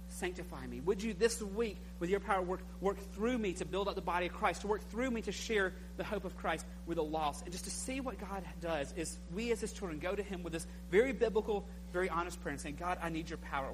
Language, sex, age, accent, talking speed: English, male, 40-59, American, 270 wpm